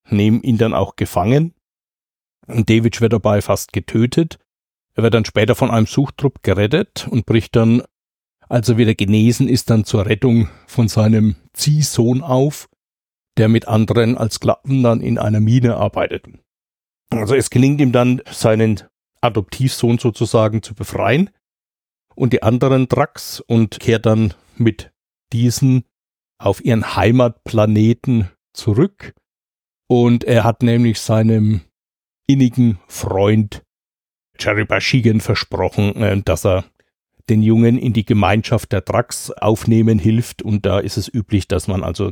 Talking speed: 135 wpm